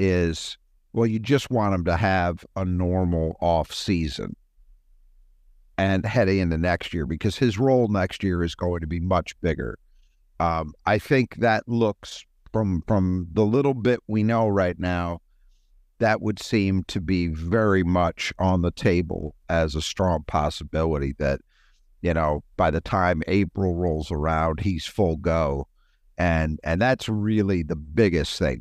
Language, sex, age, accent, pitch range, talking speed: English, male, 50-69, American, 80-100 Hz, 155 wpm